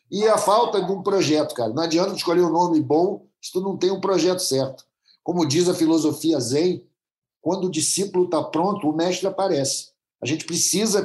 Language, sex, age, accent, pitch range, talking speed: Portuguese, male, 50-69, Brazilian, 160-210 Hz, 195 wpm